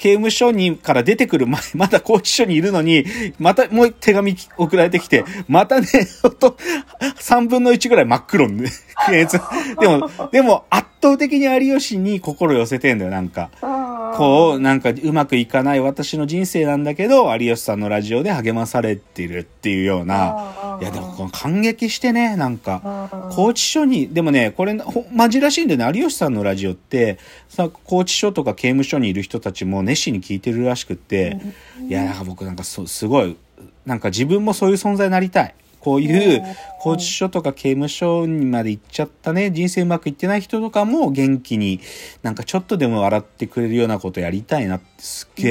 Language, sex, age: Japanese, male, 40-59